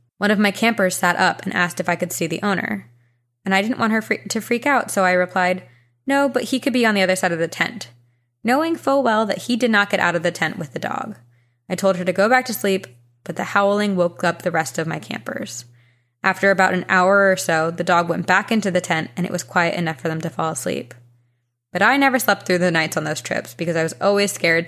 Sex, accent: female, American